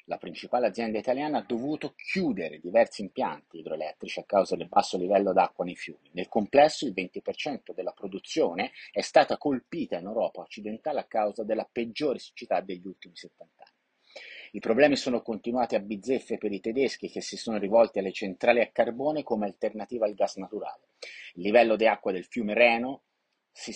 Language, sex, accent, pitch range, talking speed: Italian, male, native, 105-145 Hz, 175 wpm